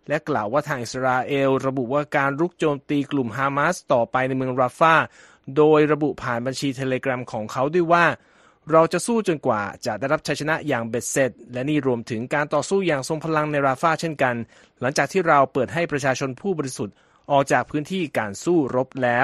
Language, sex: Thai, male